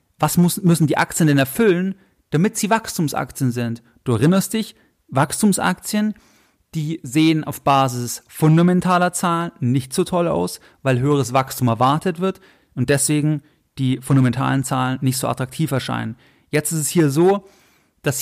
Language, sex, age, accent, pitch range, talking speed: German, male, 30-49, German, 135-170 Hz, 145 wpm